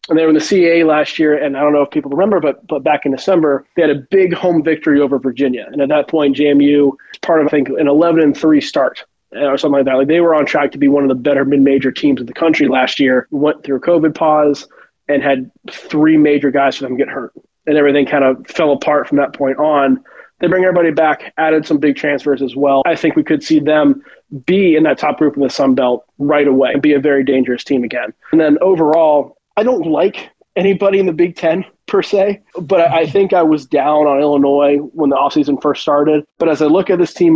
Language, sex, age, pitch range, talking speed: English, male, 20-39, 140-165 Hz, 250 wpm